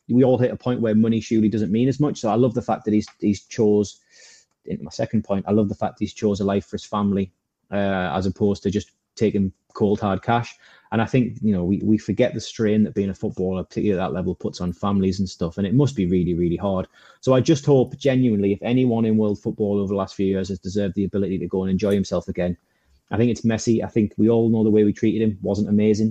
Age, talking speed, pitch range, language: 20-39, 270 wpm, 100-115 Hz, English